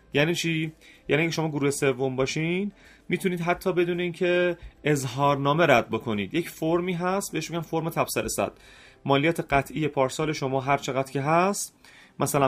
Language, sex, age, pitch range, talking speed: Persian, male, 30-49, 130-170 Hz, 155 wpm